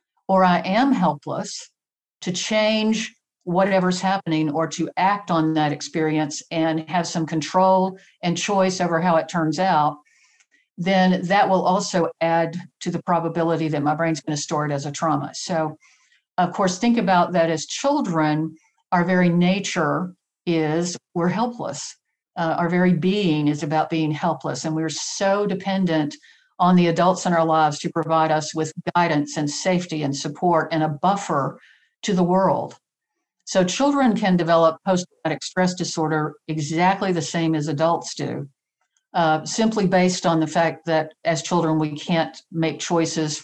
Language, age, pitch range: English, 50-69, 160-185 Hz